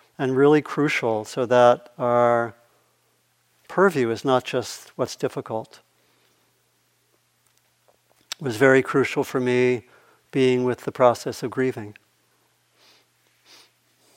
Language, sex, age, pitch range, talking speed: English, male, 60-79, 120-145 Hz, 100 wpm